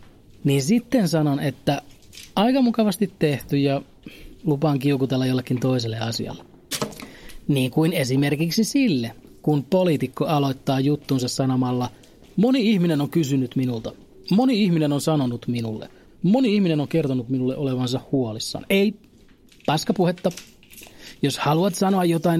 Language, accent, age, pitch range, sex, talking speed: Finnish, native, 30-49, 130-185 Hz, male, 120 wpm